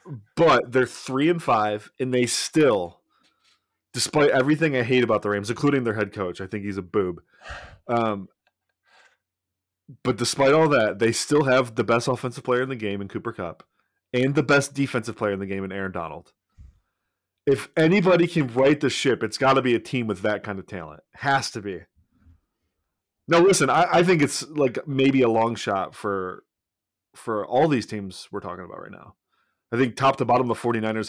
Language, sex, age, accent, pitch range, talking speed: English, male, 20-39, American, 105-135 Hz, 195 wpm